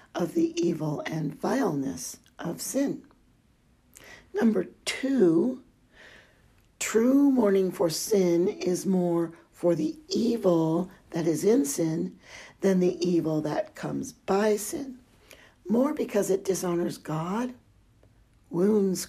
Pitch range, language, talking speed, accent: 165-240 Hz, English, 110 wpm, American